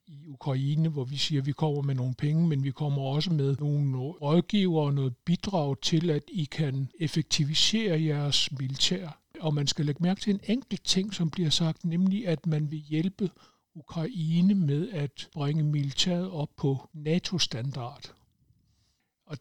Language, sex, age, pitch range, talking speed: Danish, male, 60-79, 140-170 Hz, 165 wpm